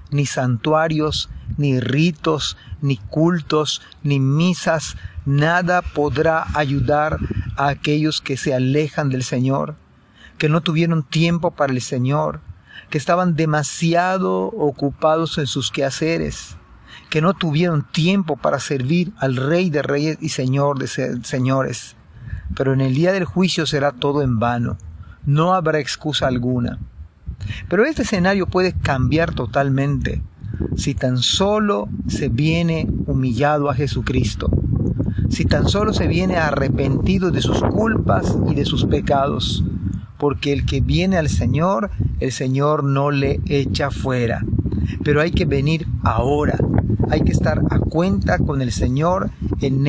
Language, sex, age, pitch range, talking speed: Spanish, male, 40-59, 120-155 Hz, 135 wpm